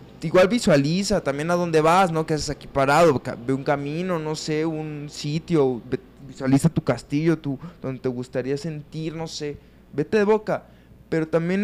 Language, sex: Spanish, male